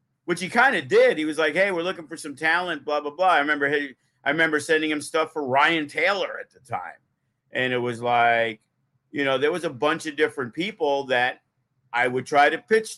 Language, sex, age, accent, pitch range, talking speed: English, male, 50-69, American, 130-155 Hz, 230 wpm